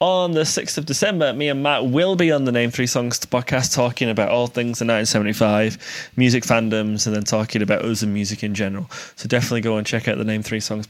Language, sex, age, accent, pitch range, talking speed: English, male, 20-39, British, 110-145 Hz, 235 wpm